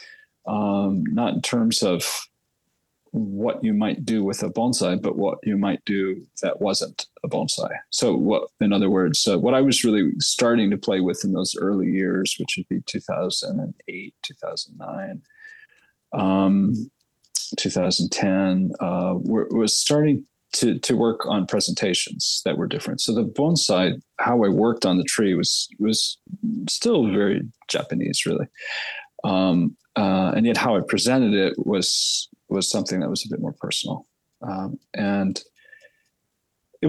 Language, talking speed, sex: English, 155 wpm, male